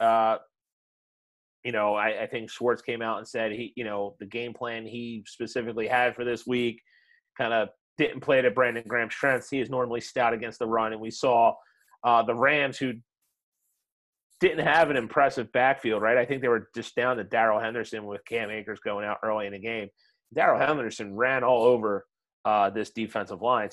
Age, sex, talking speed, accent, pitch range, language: 30-49, male, 195 wpm, American, 115-135 Hz, English